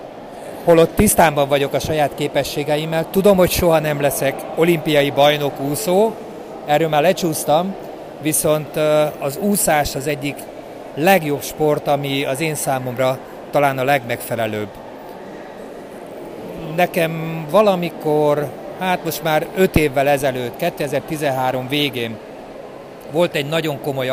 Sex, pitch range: male, 135-155 Hz